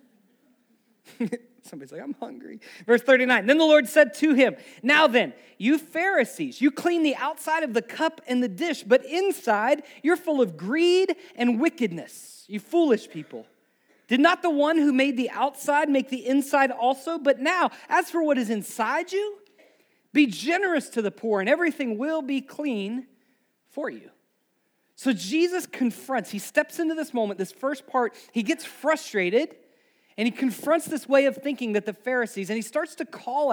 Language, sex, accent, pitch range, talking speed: English, male, American, 205-300 Hz, 175 wpm